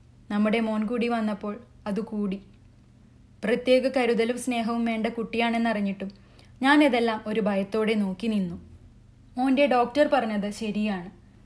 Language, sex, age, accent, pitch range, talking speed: Malayalam, female, 20-39, native, 200-245 Hz, 105 wpm